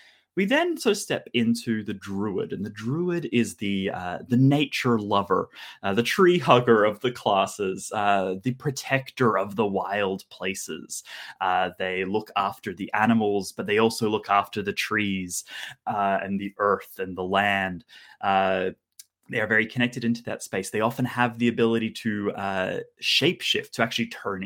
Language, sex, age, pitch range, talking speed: English, male, 20-39, 100-140 Hz, 175 wpm